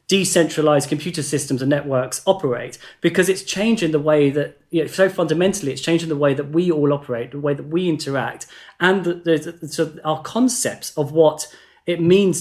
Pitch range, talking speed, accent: 140-170 Hz, 200 wpm, British